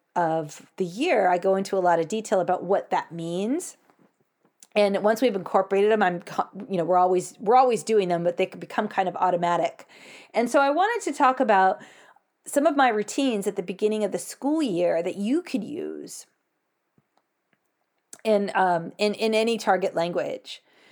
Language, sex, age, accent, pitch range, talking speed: English, female, 40-59, American, 190-255 Hz, 185 wpm